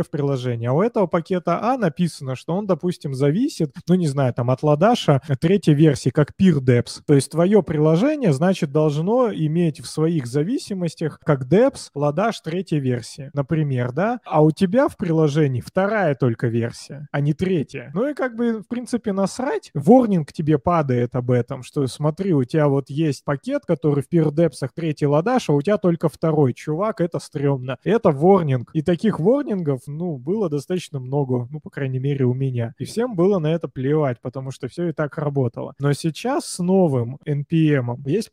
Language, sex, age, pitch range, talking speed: Russian, male, 20-39, 135-180 Hz, 180 wpm